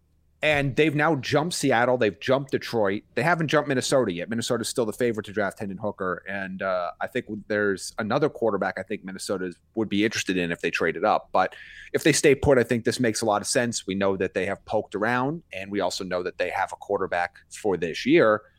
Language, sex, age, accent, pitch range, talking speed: English, male, 30-49, American, 100-135 Hz, 230 wpm